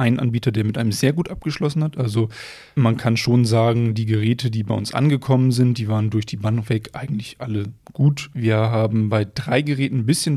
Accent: German